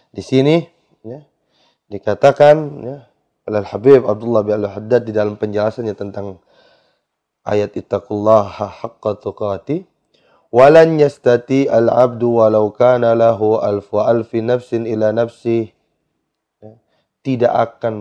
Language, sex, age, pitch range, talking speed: Indonesian, male, 30-49, 110-140 Hz, 115 wpm